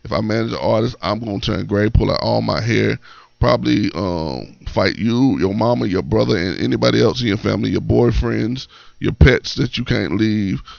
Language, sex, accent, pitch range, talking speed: English, male, American, 80-115 Hz, 205 wpm